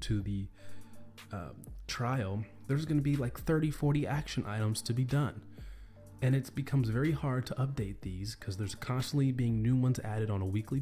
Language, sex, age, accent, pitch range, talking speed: English, male, 30-49, American, 105-130 Hz, 185 wpm